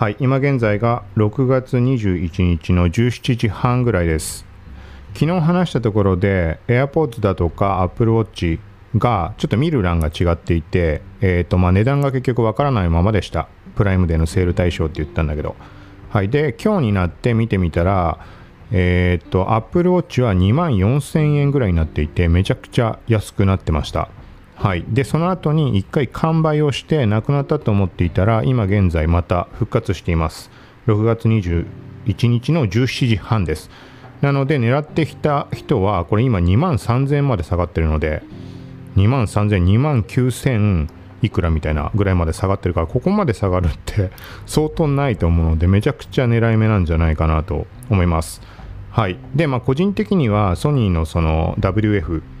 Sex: male